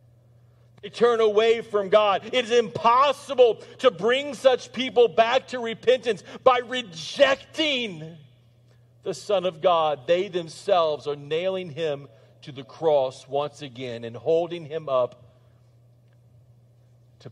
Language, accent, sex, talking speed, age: English, American, male, 125 wpm, 40-59